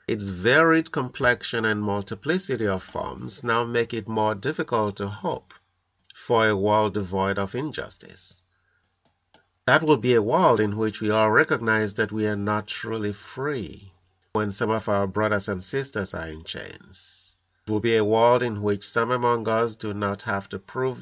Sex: male